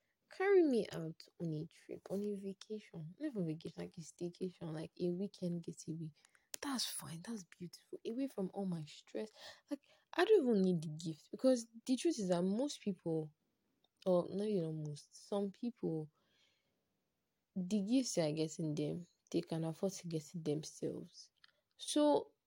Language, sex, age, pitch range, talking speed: English, female, 20-39, 165-225 Hz, 170 wpm